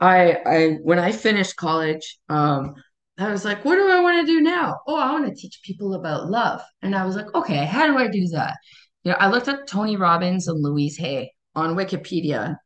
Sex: female